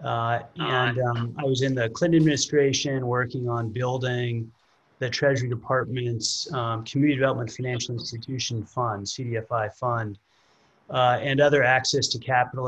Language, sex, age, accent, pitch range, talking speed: English, male, 30-49, American, 115-130 Hz, 135 wpm